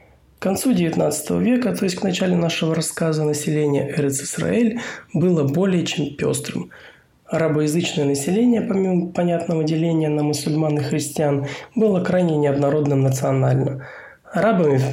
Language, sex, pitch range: Russian, male, 140-170 Hz